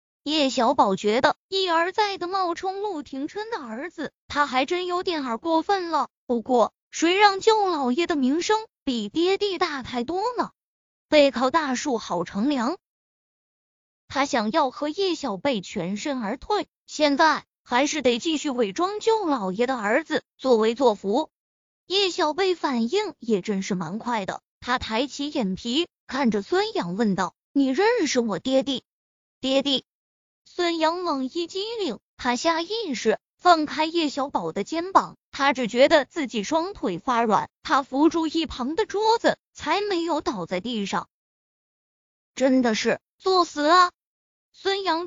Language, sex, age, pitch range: Chinese, female, 20-39, 250-350 Hz